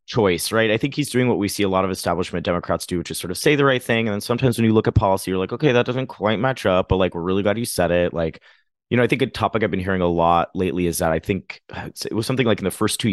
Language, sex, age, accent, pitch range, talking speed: English, male, 30-49, American, 85-120 Hz, 330 wpm